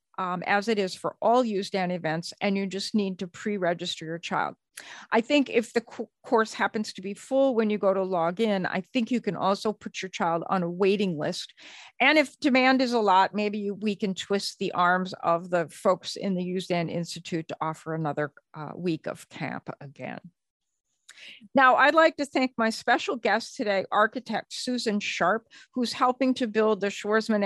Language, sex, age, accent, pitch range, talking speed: English, female, 50-69, American, 180-225 Hz, 190 wpm